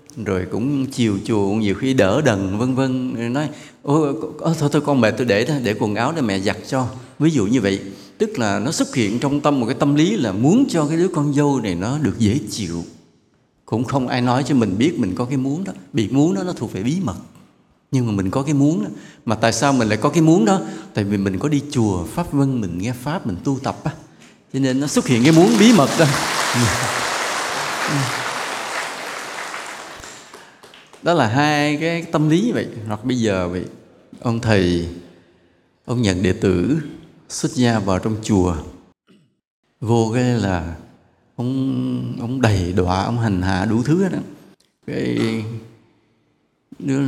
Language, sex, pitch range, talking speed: English, male, 105-150 Hz, 190 wpm